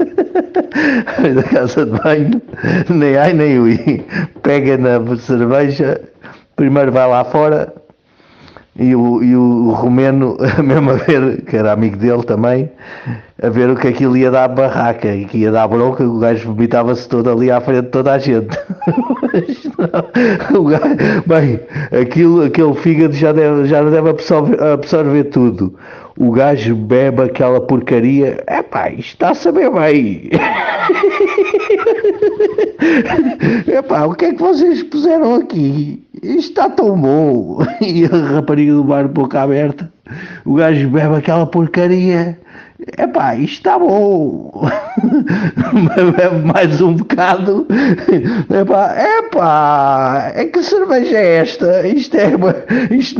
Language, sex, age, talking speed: Portuguese, male, 60-79, 140 wpm